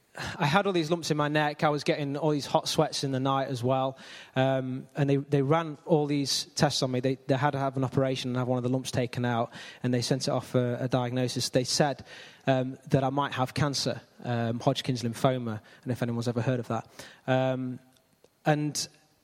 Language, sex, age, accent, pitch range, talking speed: English, male, 20-39, British, 125-145 Hz, 230 wpm